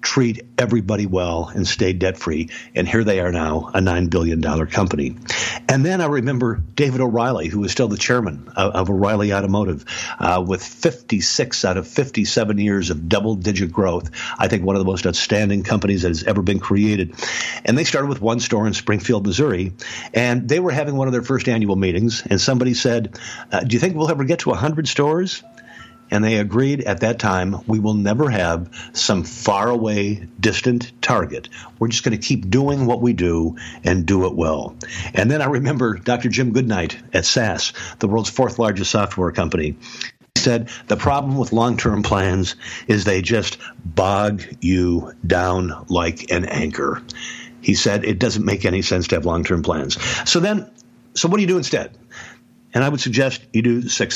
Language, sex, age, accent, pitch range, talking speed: English, male, 50-69, American, 95-125 Hz, 190 wpm